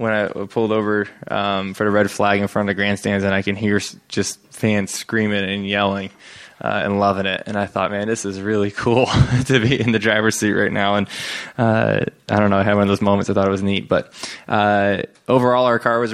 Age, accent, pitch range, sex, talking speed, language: 20-39, American, 100-110 Hz, male, 240 wpm, English